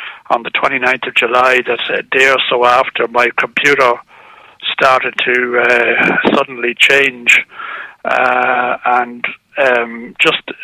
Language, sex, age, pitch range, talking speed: English, male, 60-79, 120-140 Hz, 125 wpm